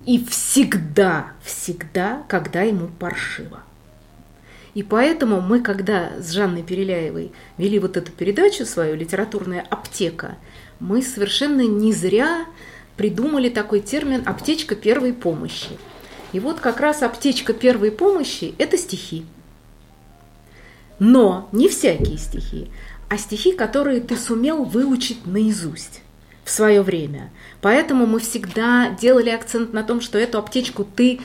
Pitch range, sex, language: 195-250 Hz, female, Russian